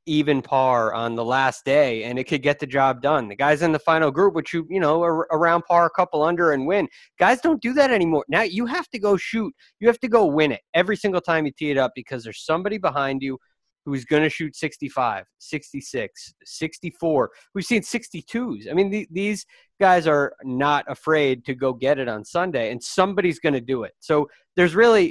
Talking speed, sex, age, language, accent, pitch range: 220 wpm, male, 20-39, English, American, 130-180 Hz